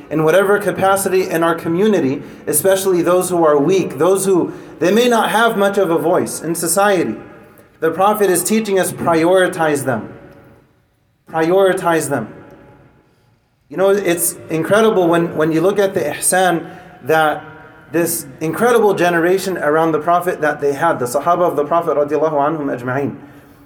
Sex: male